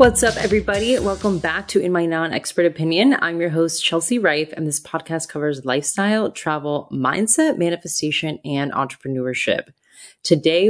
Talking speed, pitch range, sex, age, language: 150 wpm, 140-175 Hz, female, 20-39, English